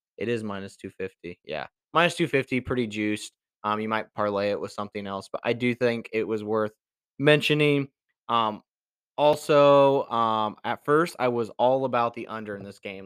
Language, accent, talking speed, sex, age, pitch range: English, American, 180 wpm, male, 20-39, 105-125 Hz